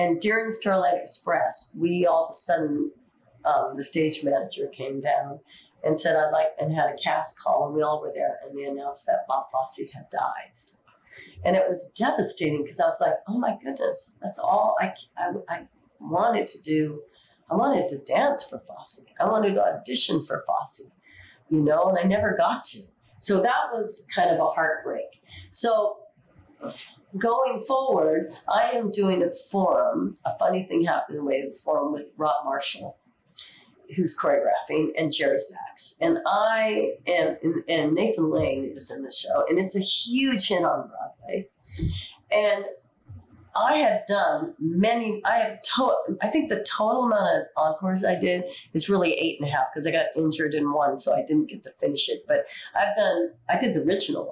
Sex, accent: female, American